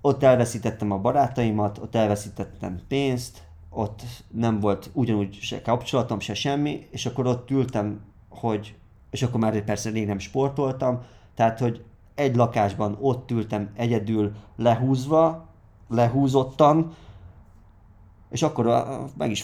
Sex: male